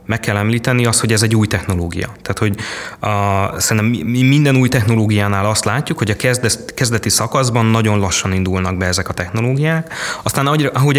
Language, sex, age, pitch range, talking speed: Hungarian, male, 30-49, 100-125 Hz, 170 wpm